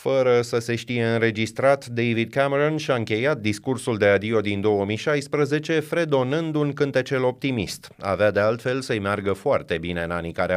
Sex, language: male, Romanian